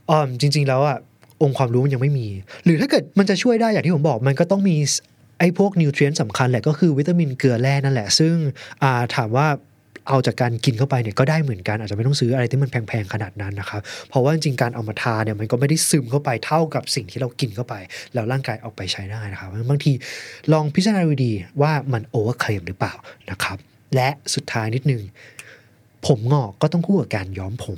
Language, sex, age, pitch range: Thai, male, 20-39, 115-150 Hz